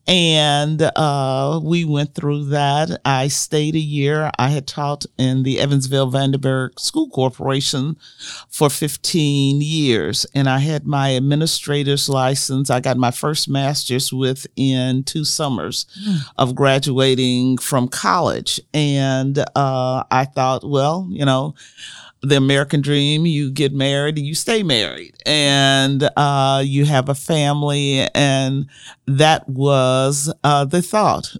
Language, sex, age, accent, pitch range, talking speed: English, male, 40-59, American, 135-150 Hz, 130 wpm